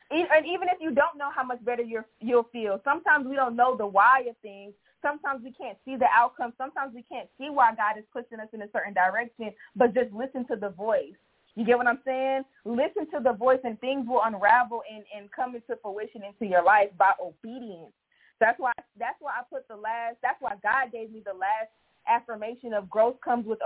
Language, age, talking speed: English, 20-39, 225 wpm